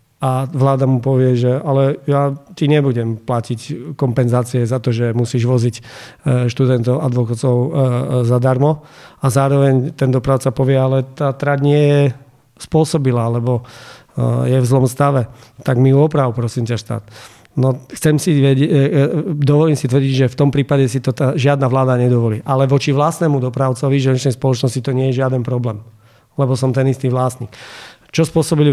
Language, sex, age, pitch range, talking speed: Slovak, male, 40-59, 125-140 Hz, 155 wpm